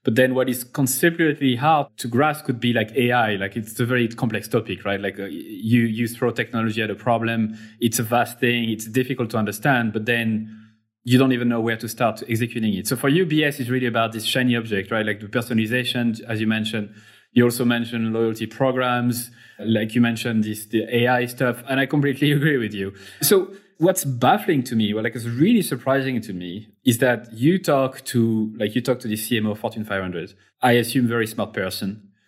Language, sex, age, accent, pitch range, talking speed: English, male, 20-39, French, 110-130 Hz, 210 wpm